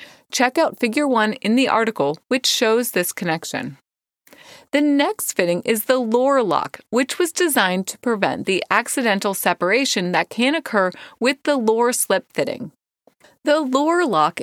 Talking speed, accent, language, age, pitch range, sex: 155 wpm, American, English, 30-49, 200-275 Hz, female